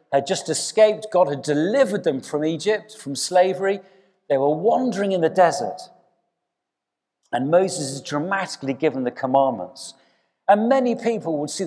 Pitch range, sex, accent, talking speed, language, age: 155-220 Hz, male, British, 150 wpm, English, 50-69